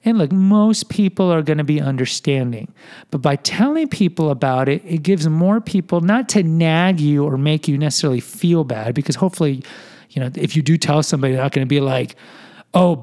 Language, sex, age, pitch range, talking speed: English, male, 40-59, 140-180 Hz, 210 wpm